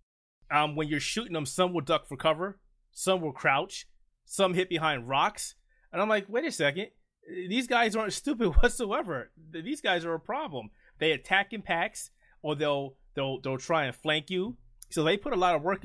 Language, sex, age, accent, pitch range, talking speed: English, male, 20-39, American, 125-160 Hz, 195 wpm